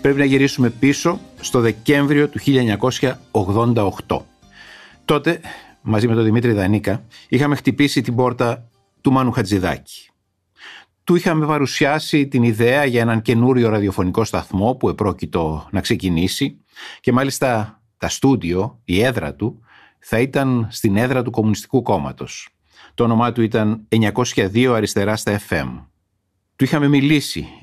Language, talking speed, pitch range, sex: Greek, 130 wpm, 100-135 Hz, male